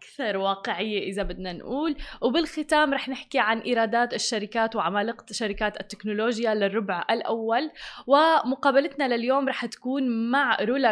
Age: 20-39